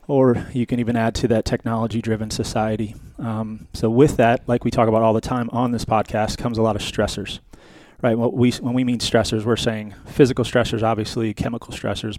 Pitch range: 105-120 Hz